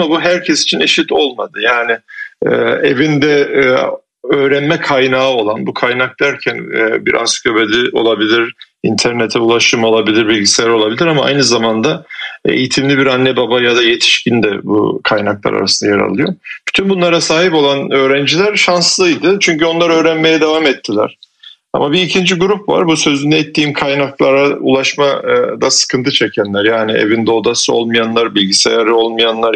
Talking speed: 135 wpm